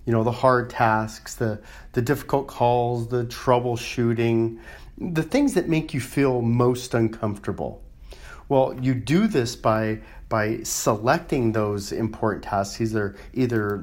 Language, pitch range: English, 110-135 Hz